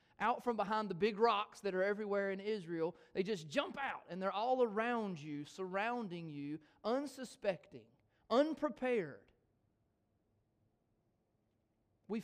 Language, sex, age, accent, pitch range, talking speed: English, male, 30-49, American, 130-210 Hz, 125 wpm